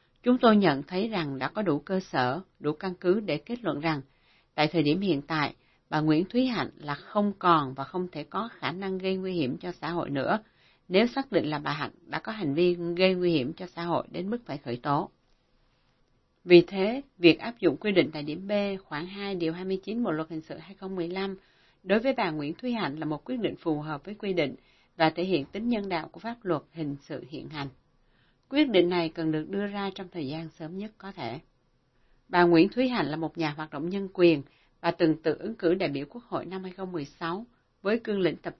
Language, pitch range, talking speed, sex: Vietnamese, 155-195 Hz, 235 wpm, female